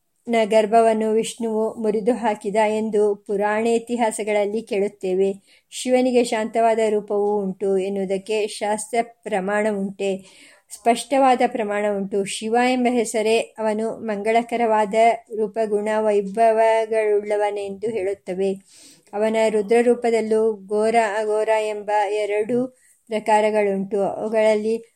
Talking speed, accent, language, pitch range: 80 wpm, native, Kannada, 205-230 Hz